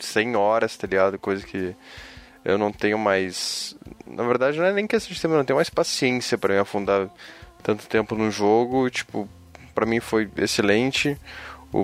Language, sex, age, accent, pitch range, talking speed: Portuguese, male, 20-39, Brazilian, 100-130 Hz, 175 wpm